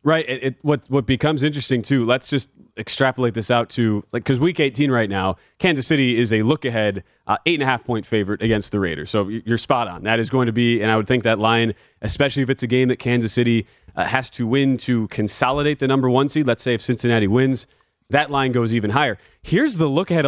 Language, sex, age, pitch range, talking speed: English, male, 30-49, 115-145 Hz, 220 wpm